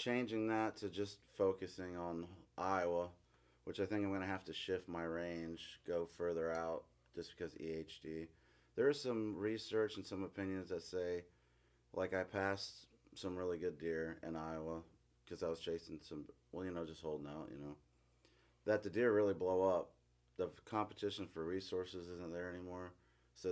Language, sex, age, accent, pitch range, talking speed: English, male, 30-49, American, 80-95 Hz, 180 wpm